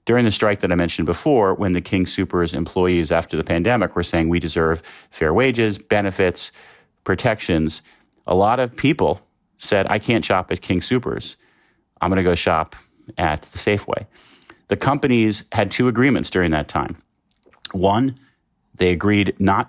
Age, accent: 40-59, American